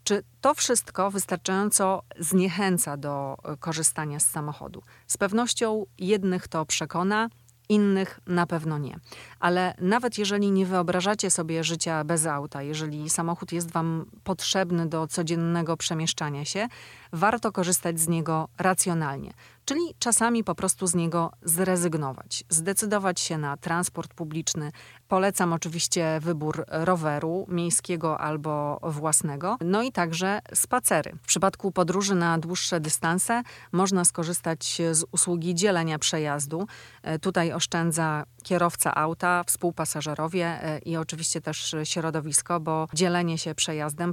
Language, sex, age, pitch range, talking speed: Polish, female, 30-49, 155-185 Hz, 120 wpm